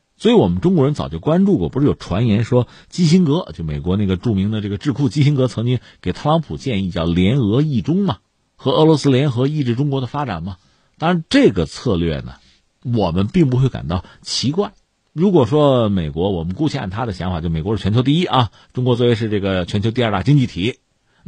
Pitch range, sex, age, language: 90-145 Hz, male, 50-69, Chinese